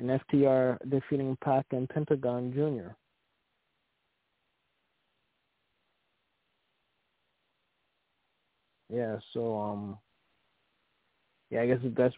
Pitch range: 105-130 Hz